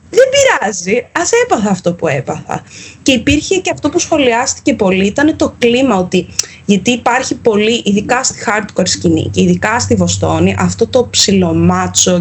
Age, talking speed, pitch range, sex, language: 20-39, 155 wpm, 185-290 Hz, female, Greek